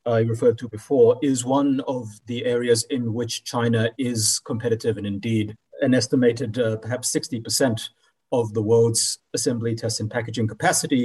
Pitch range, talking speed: 115-130 Hz, 160 wpm